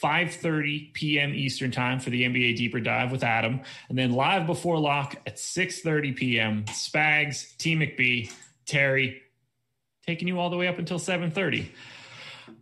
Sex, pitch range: male, 125-155 Hz